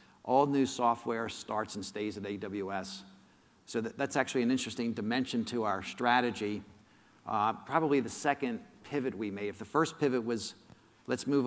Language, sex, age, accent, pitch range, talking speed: English, male, 50-69, American, 115-135 Hz, 160 wpm